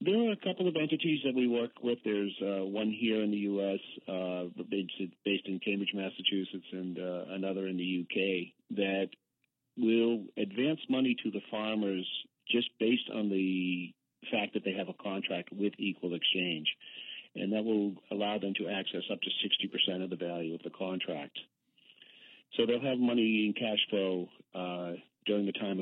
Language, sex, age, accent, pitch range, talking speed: English, male, 50-69, American, 90-105 Hz, 175 wpm